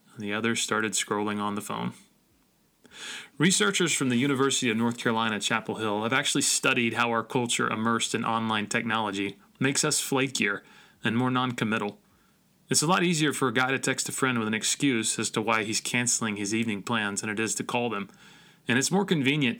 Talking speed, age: 200 wpm, 30-49